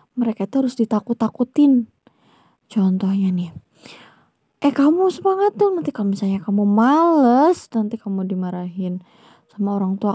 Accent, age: Indonesian, 20-39